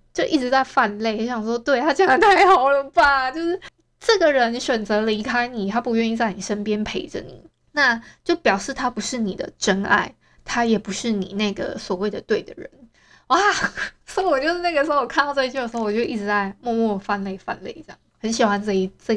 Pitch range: 200-275 Hz